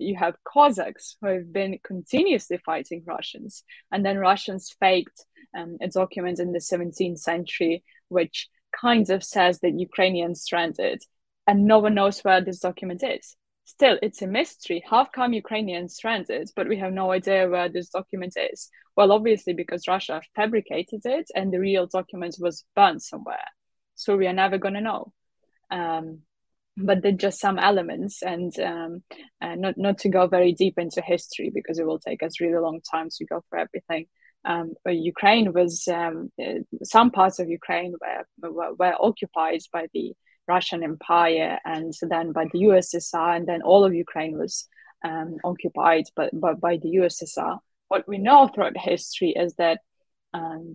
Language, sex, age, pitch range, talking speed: Portuguese, female, 20-39, 170-200 Hz, 170 wpm